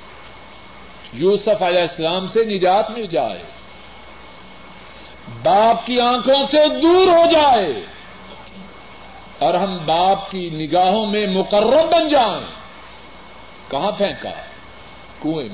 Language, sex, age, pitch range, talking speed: Urdu, male, 50-69, 180-260 Hz, 100 wpm